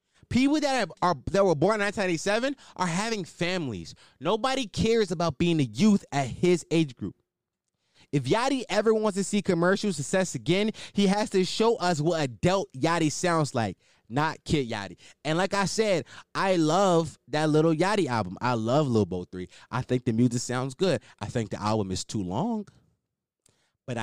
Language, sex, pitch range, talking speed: English, male, 125-190 Hz, 180 wpm